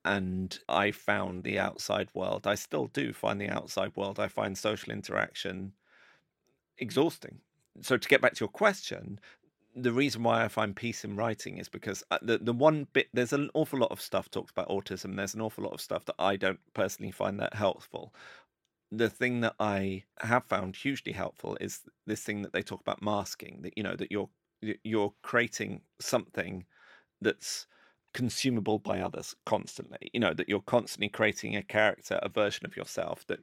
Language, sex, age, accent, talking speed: English, male, 30-49, British, 185 wpm